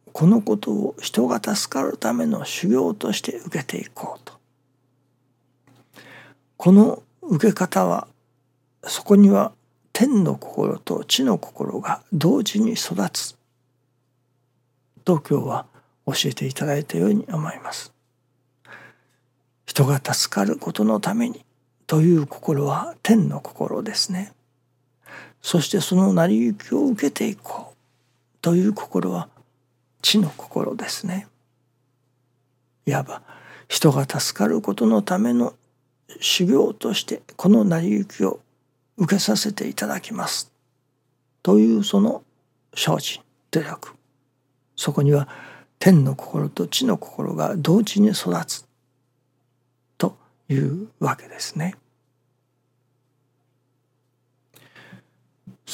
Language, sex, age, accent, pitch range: Japanese, male, 60-79, native, 125-180 Hz